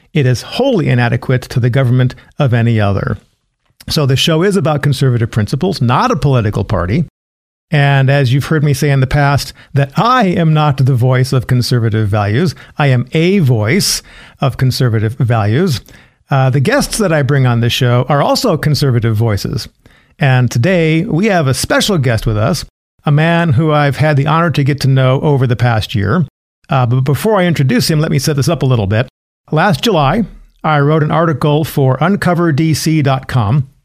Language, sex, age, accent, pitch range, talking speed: English, male, 50-69, American, 125-160 Hz, 185 wpm